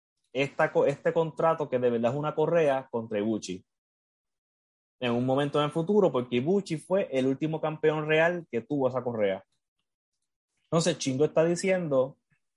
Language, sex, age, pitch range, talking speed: Spanish, male, 20-39, 125-165 Hz, 155 wpm